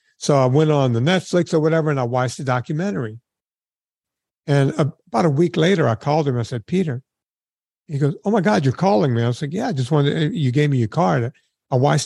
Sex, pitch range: male, 120-155 Hz